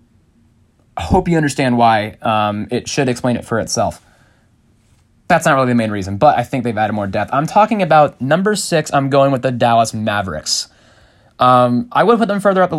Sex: male